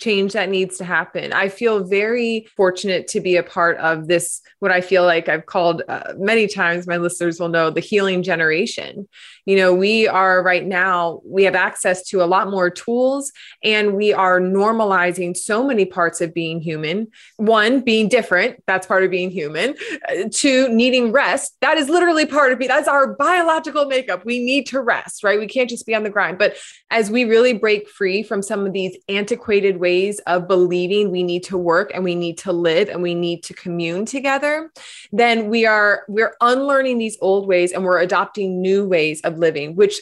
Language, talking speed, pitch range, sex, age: English, 200 wpm, 185-235 Hz, female, 20-39